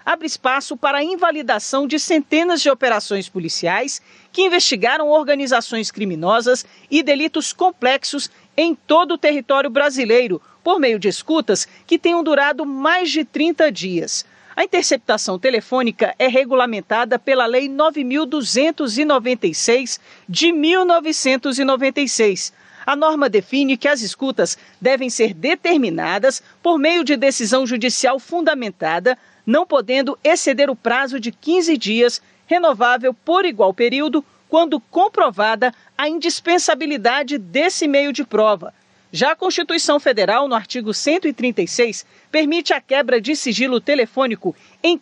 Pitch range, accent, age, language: 240-315 Hz, Brazilian, 50-69, Portuguese